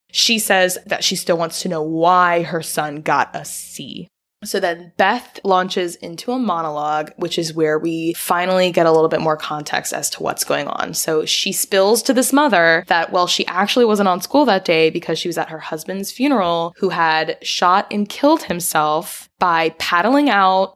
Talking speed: 195 wpm